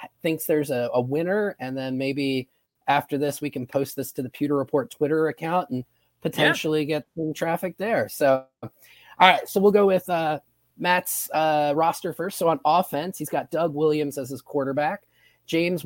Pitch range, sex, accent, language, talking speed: 125-155 Hz, male, American, English, 180 wpm